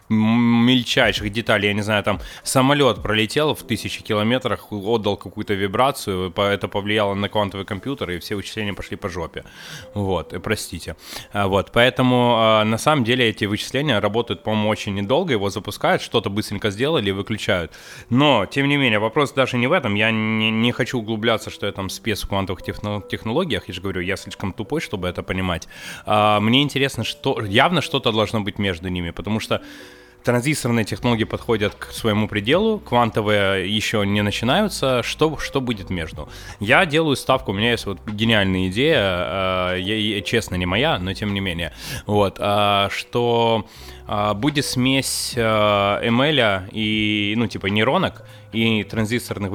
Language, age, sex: Russian, 20-39, male